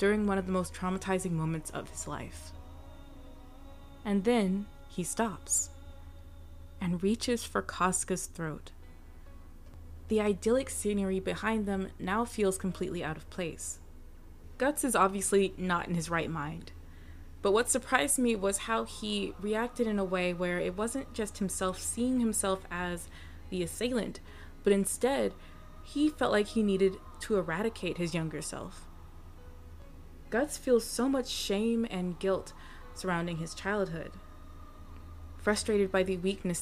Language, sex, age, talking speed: English, female, 20-39, 140 wpm